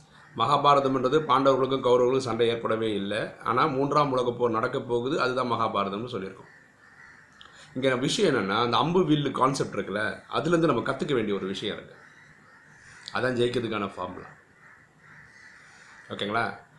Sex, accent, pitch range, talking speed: male, native, 115-145 Hz, 120 wpm